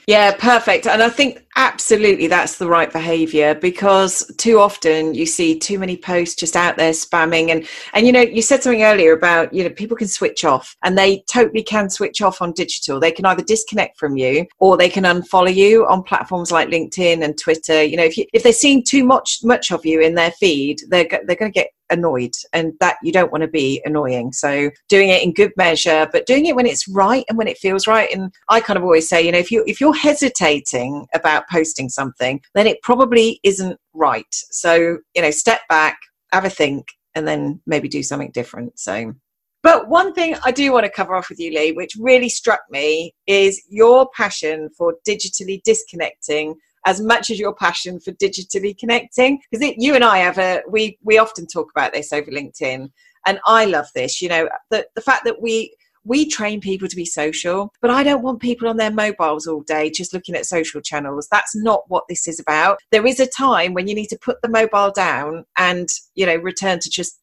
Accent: British